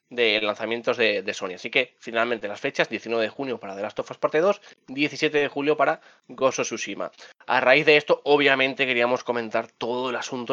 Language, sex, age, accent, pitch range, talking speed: English, male, 20-39, Spanish, 115-145 Hz, 205 wpm